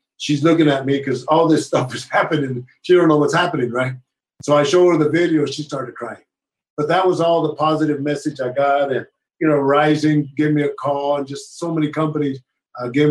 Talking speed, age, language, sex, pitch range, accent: 225 wpm, 50-69, English, male, 135-160 Hz, American